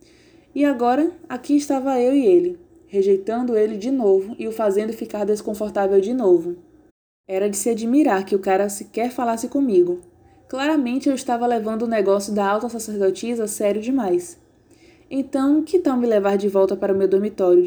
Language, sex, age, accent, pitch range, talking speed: Portuguese, female, 20-39, Brazilian, 205-295 Hz, 170 wpm